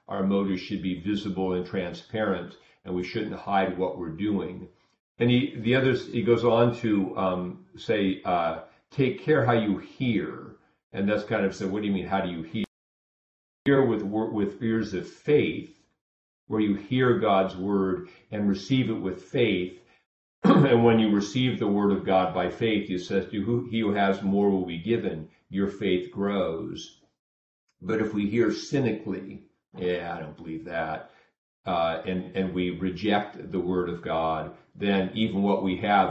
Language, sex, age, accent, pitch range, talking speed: English, male, 50-69, American, 90-105 Hz, 180 wpm